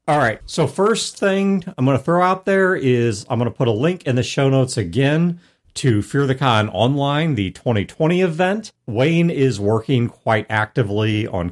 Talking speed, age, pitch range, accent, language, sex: 195 wpm, 50-69, 100-140 Hz, American, English, male